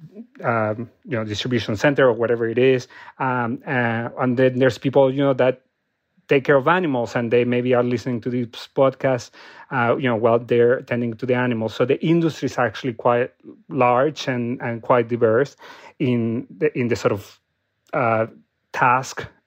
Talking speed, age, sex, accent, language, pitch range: 175 wpm, 30-49, male, Mexican, English, 120-140 Hz